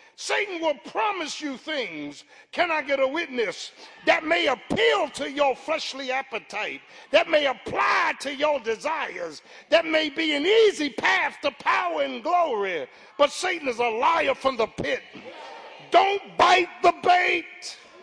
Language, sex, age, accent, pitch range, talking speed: English, male, 50-69, American, 310-370 Hz, 150 wpm